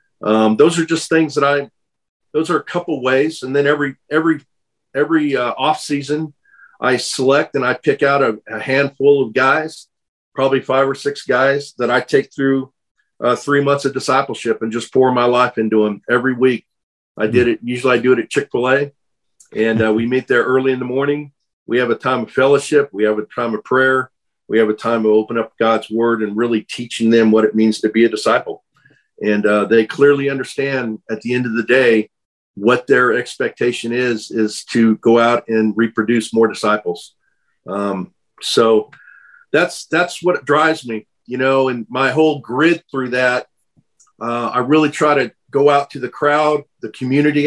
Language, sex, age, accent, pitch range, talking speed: English, male, 50-69, American, 115-145 Hz, 195 wpm